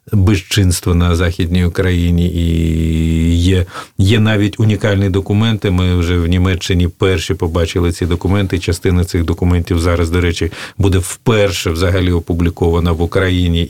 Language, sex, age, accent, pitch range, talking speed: Russian, male, 40-59, native, 85-95 Hz, 130 wpm